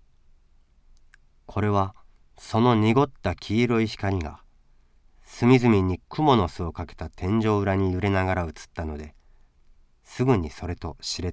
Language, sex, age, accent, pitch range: Japanese, male, 40-59, native, 70-100 Hz